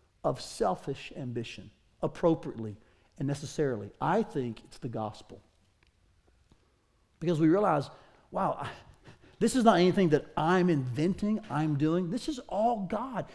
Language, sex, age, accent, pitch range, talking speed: English, male, 40-59, American, 140-195 Hz, 125 wpm